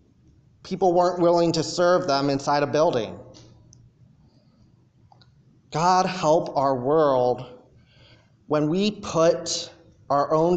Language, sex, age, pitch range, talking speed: English, male, 30-49, 135-170 Hz, 100 wpm